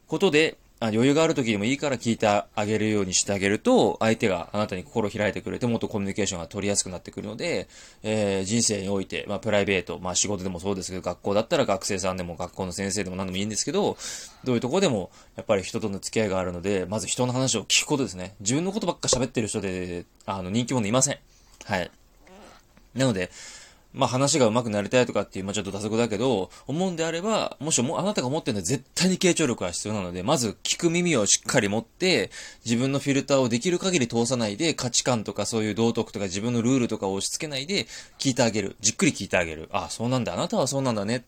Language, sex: Japanese, male